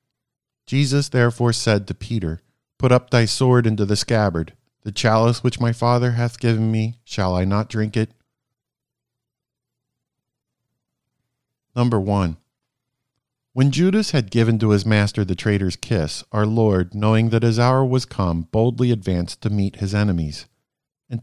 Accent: American